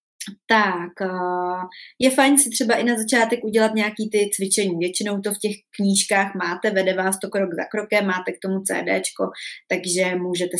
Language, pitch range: Czech, 190-235 Hz